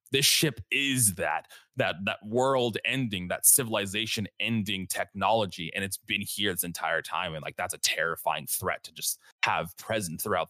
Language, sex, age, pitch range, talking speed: English, male, 20-39, 85-115 Hz, 170 wpm